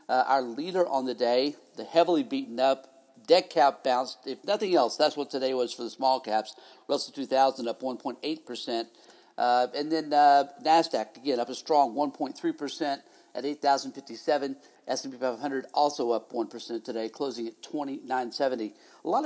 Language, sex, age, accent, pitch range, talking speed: English, male, 50-69, American, 130-160 Hz, 160 wpm